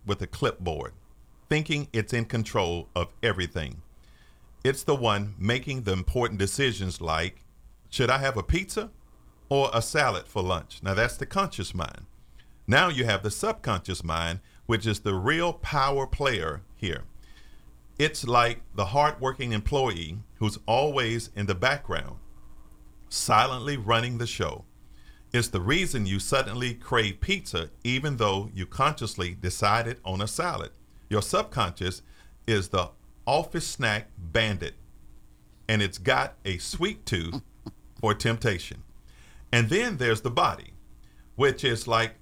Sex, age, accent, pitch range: male, 50-69, American, 90-120 Hz